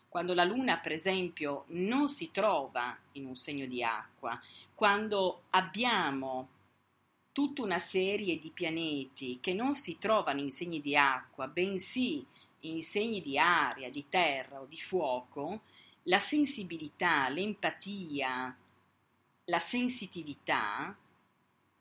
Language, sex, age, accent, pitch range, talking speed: Italian, female, 40-59, native, 135-190 Hz, 120 wpm